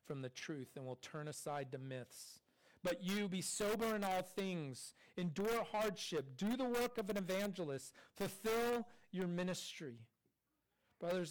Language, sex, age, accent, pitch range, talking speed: English, male, 40-59, American, 150-195 Hz, 150 wpm